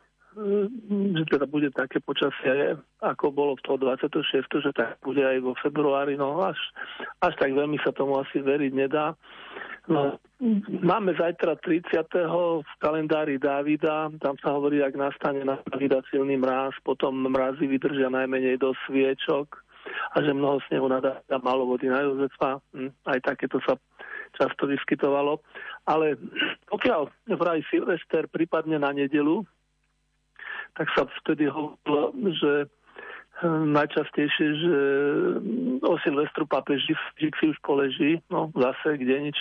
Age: 40-59